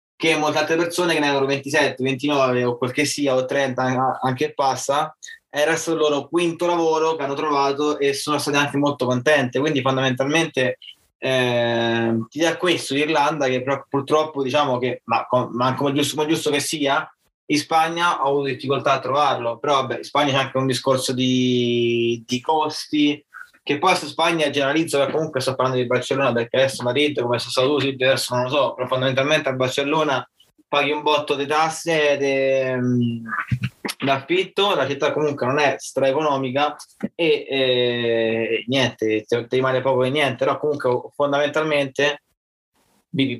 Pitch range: 125-150 Hz